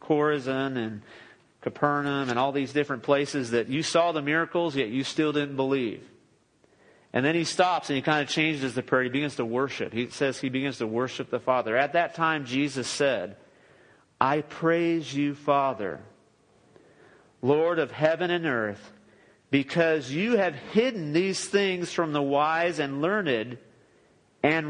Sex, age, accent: male, 40-59, American